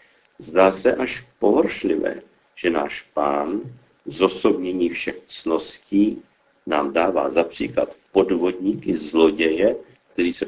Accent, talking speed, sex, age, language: native, 105 wpm, male, 50-69, Czech